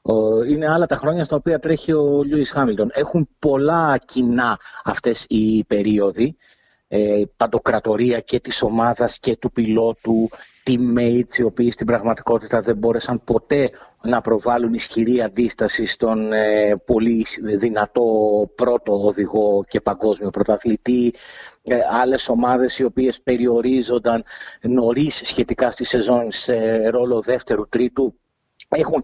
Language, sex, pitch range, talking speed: Greek, male, 115-140 Hz, 125 wpm